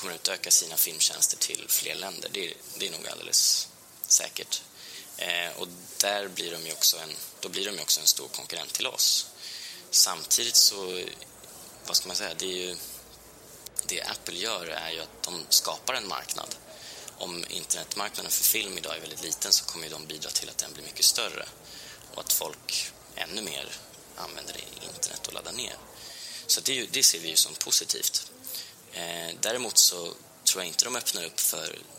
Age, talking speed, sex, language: 20-39, 190 wpm, male, Swedish